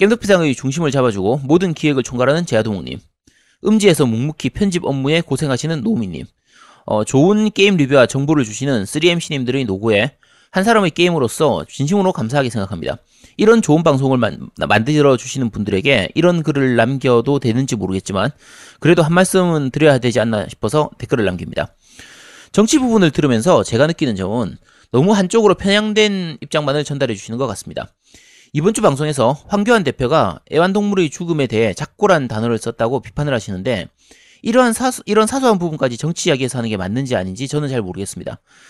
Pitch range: 125-185 Hz